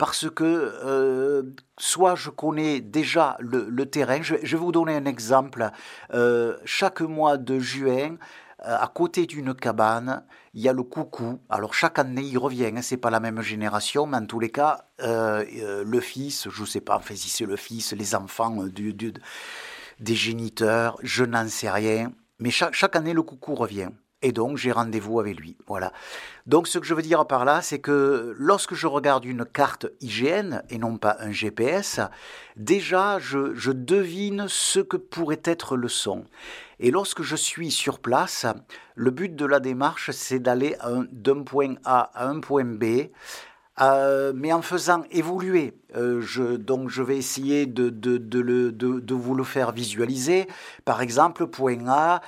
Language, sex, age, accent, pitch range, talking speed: French, male, 50-69, French, 120-155 Hz, 185 wpm